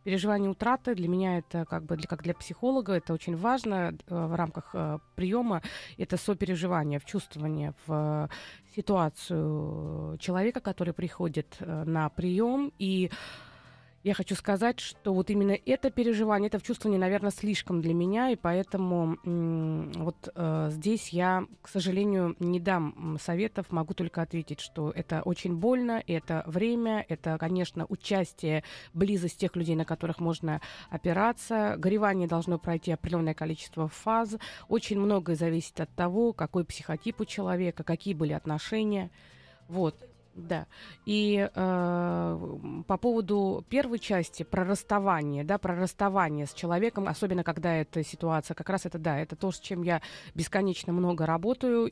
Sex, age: female, 20-39